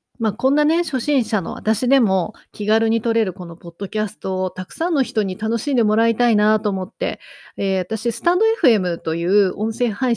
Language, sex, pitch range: Japanese, female, 190-250 Hz